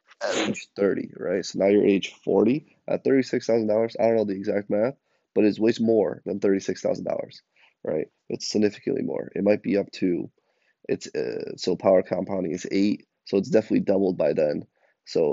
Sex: male